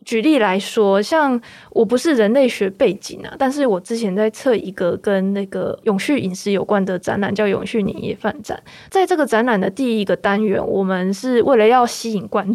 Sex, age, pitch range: female, 20-39, 210-265 Hz